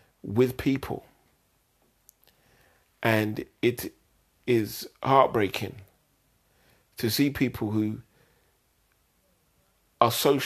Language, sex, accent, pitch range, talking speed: English, male, British, 100-130 Hz, 70 wpm